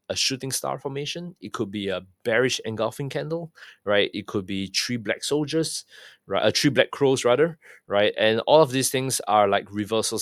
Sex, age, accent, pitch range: male, 20-39, Malaysian, 105-135 Hz